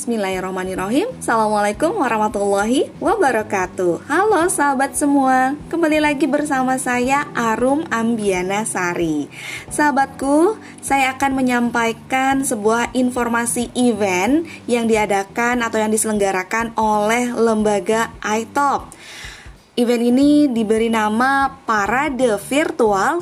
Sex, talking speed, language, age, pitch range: female, 90 wpm, Indonesian, 20-39, 205-285 Hz